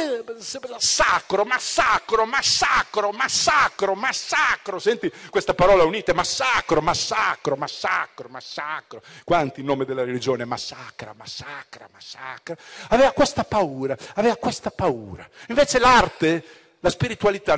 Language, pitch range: Italian, 140-190 Hz